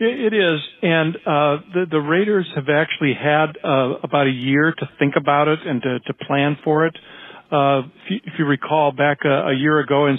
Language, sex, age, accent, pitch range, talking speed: English, male, 50-69, American, 135-155 Hz, 210 wpm